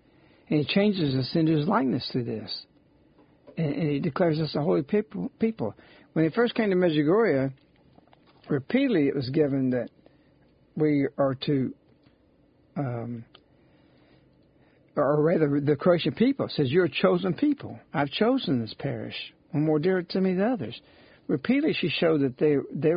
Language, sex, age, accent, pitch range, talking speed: English, male, 60-79, American, 145-190 Hz, 155 wpm